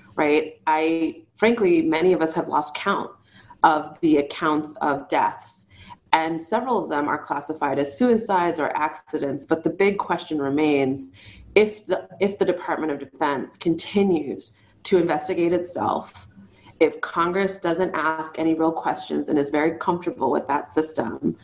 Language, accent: English, American